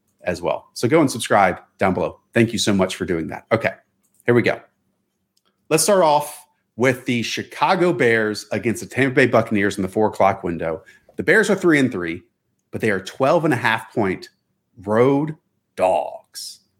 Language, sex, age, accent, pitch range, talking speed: English, male, 30-49, American, 110-155 Hz, 185 wpm